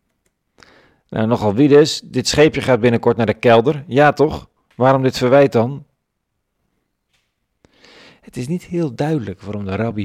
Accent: Dutch